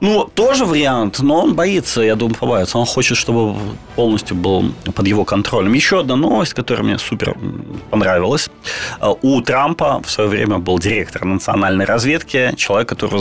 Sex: male